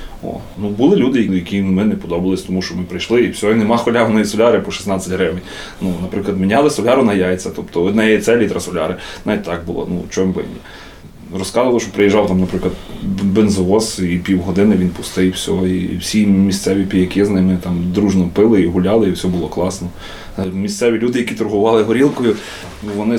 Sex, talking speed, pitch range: male, 185 wpm, 95-115 Hz